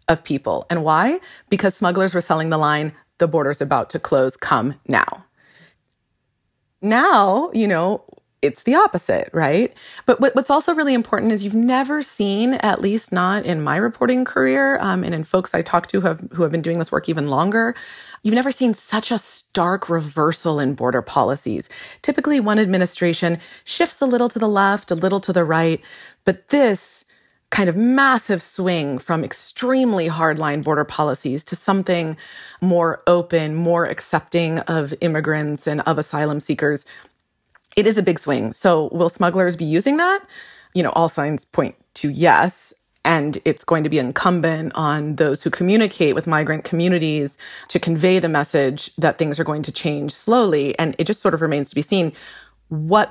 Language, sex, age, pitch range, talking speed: English, female, 30-49, 155-205 Hz, 175 wpm